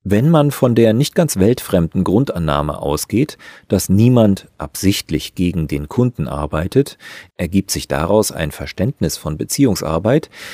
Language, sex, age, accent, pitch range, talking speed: German, male, 40-59, German, 80-110 Hz, 130 wpm